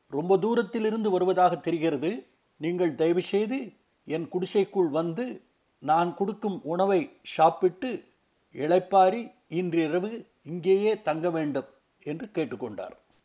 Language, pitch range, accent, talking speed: Tamil, 170-230 Hz, native, 90 wpm